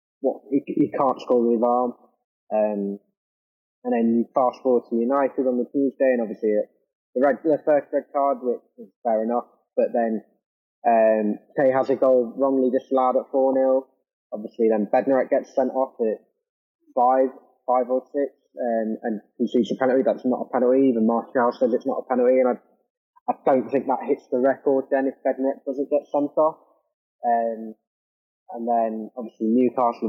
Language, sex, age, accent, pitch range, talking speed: English, male, 20-39, British, 120-140 Hz, 180 wpm